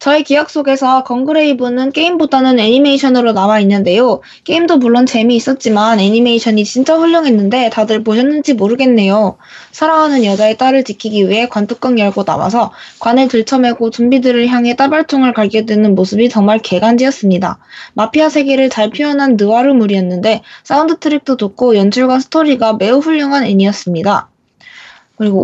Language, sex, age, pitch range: Korean, female, 20-39, 210-270 Hz